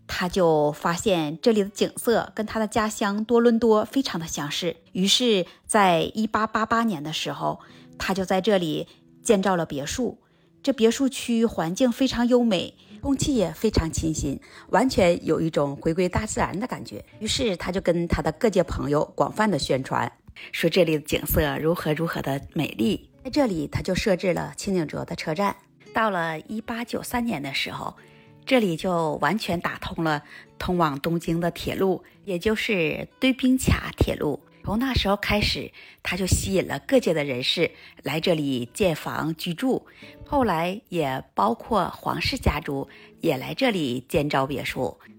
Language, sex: Chinese, female